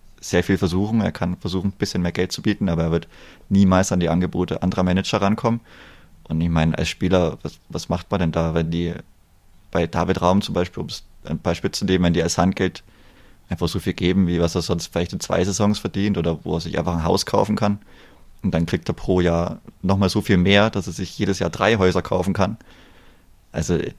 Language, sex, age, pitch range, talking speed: German, male, 30-49, 85-100 Hz, 230 wpm